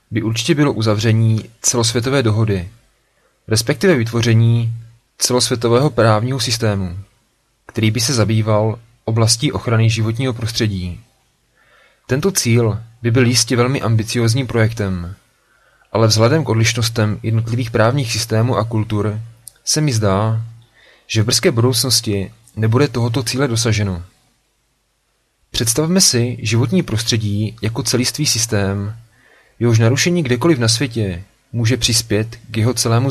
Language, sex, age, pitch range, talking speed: Czech, male, 30-49, 110-125 Hz, 115 wpm